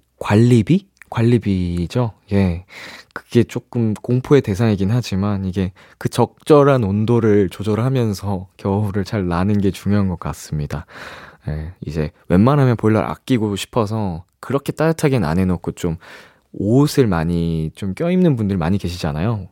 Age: 20-39